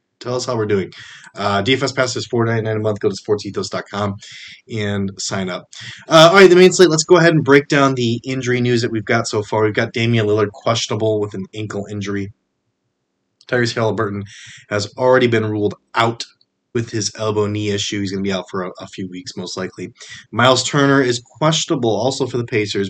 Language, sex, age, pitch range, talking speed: English, male, 20-39, 100-125 Hz, 205 wpm